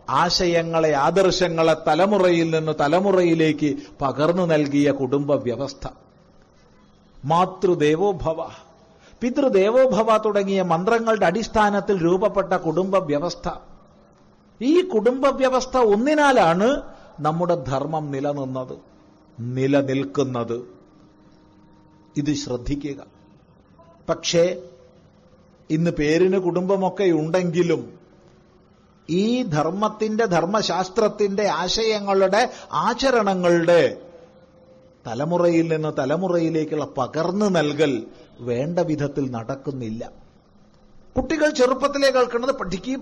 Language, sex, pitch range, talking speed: Malayalam, male, 150-210 Hz, 65 wpm